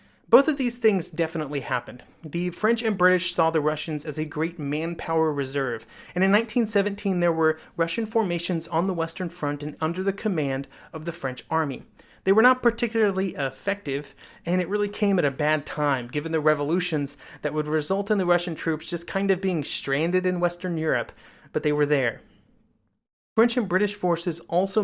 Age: 30-49